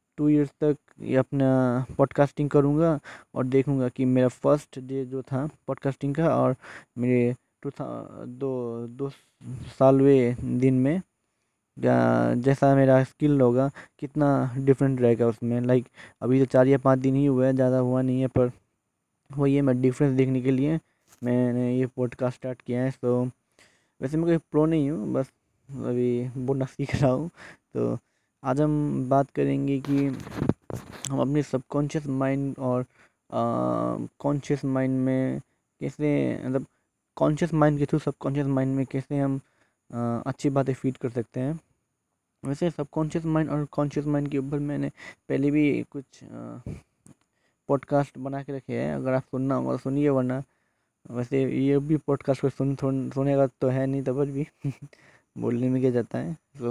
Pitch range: 125-140 Hz